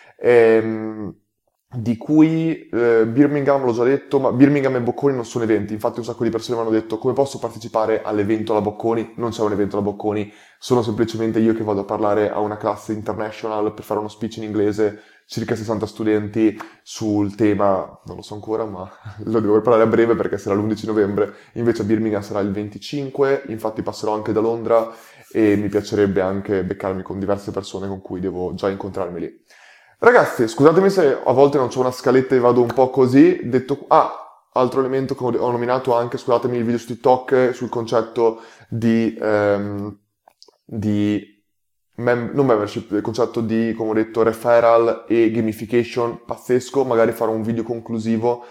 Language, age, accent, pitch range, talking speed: Italian, 20-39, native, 105-120 Hz, 175 wpm